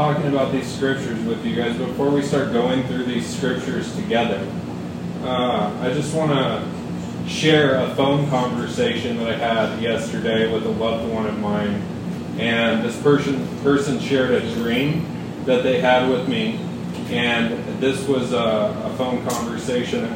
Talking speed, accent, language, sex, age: 160 wpm, American, English, male, 30-49